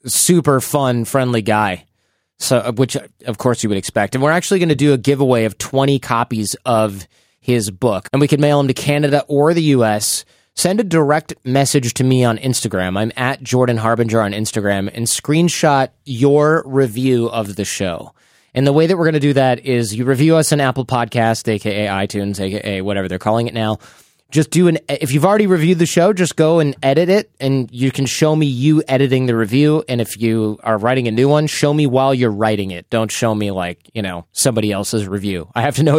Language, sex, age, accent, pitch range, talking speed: English, male, 20-39, American, 110-145 Hz, 215 wpm